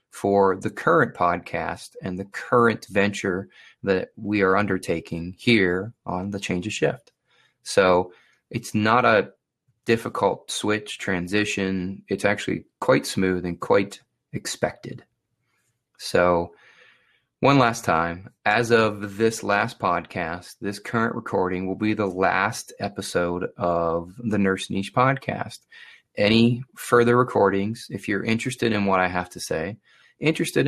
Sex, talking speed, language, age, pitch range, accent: male, 130 wpm, English, 30-49, 95-115 Hz, American